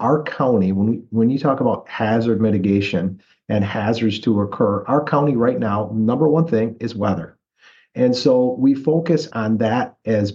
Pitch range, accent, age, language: 110-140 Hz, American, 50-69, English